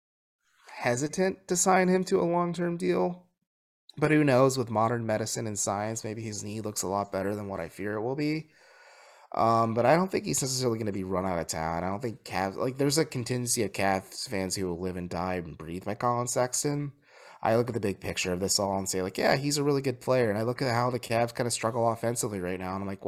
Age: 20-39